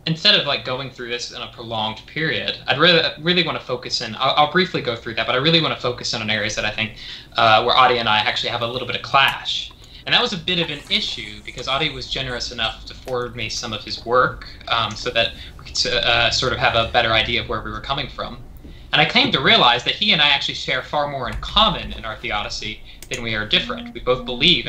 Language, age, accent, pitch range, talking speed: English, 20-39, American, 115-140 Hz, 270 wpm